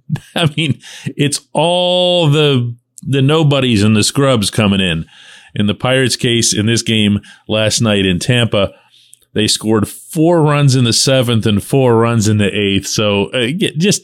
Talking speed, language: 165 wpm, English